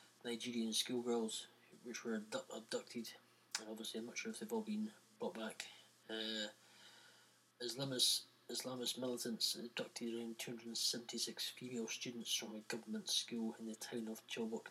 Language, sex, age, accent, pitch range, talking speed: English, male, 20-39, British, 110-120 Hz, 140 wpm